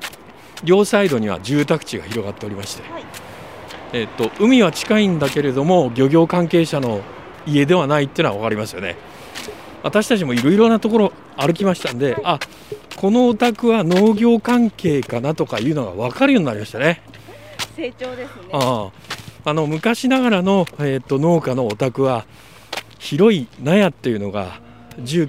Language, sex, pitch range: Japanese, male, 125-195 Hz